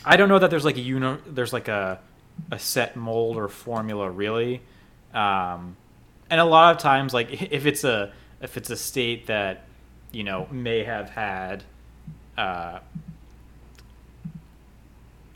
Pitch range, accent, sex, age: 105-130 Hz, American, male, 30-49